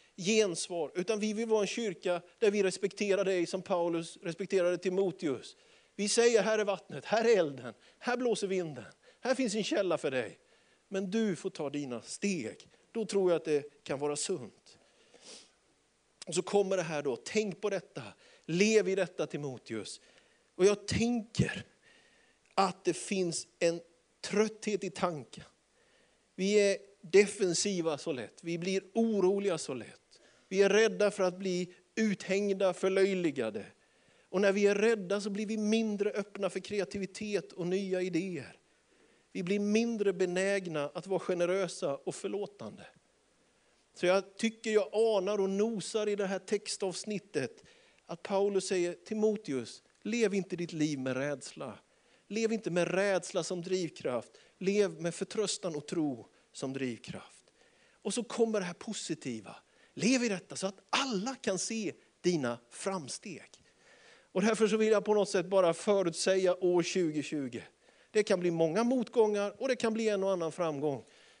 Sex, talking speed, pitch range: male, 155 wpm, 175-210 Hz